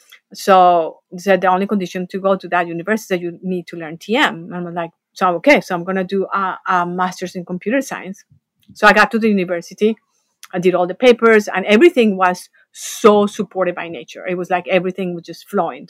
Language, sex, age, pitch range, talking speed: English, female, 50-69, 180-205 Hz, 225 wpm